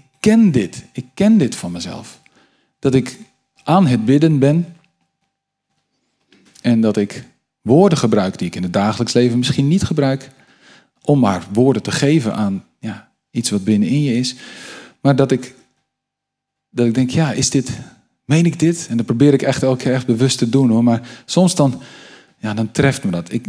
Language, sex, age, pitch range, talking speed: Dutch, male, 40-59, 115-145 Hz, 180 wpm